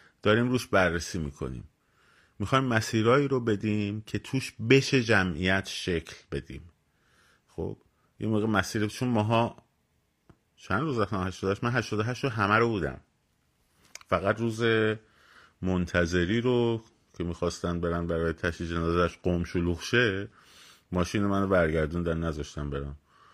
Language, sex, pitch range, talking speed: Persian, male, 75-105 Hz, 125 wpm